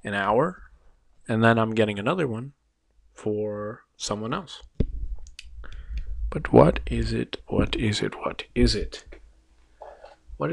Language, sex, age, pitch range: English, male, 20-39, 80-120 Hz